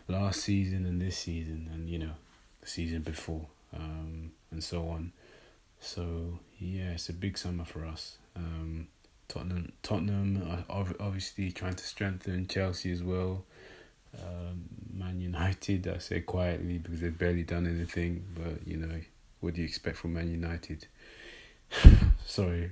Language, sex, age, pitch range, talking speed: English, male, 20-39, 80-90 Hz, 145 wpm